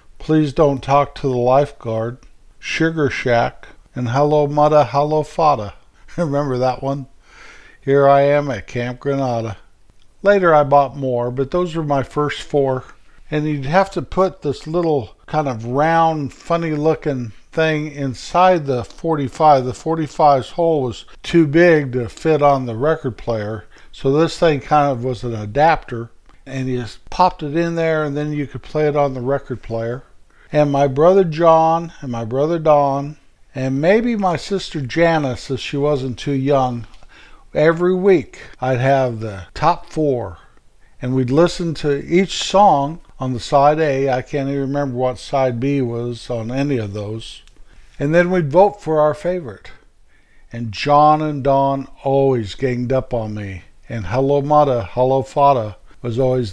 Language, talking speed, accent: English, 165 wpm, American